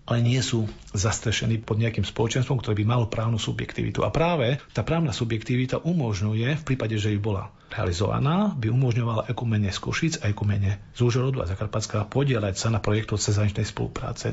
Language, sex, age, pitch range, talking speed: Slovak, male, 40-59, 105-125 Hz, 175 wpm